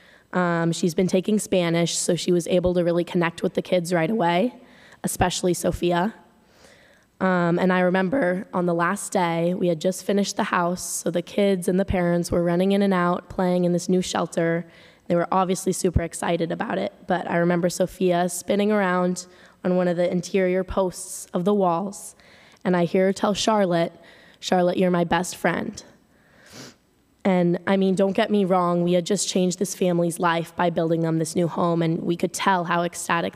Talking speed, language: 195 wpm, English